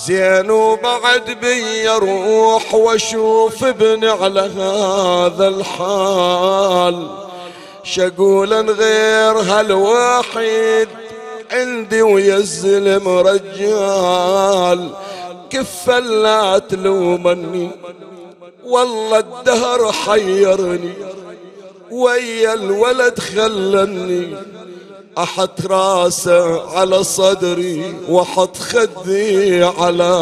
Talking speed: 60 wpm